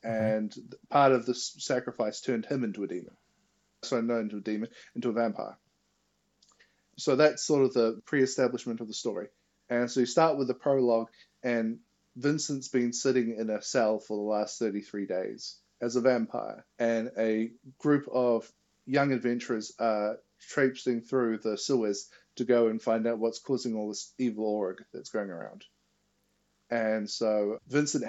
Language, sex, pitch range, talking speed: English, male, 110-130 Hz, 165 wpm